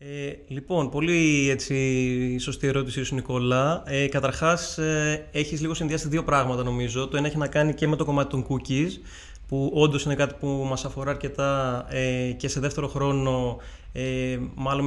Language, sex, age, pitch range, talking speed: Greek, male, 20-39, 130-155 Hz, 175 wpm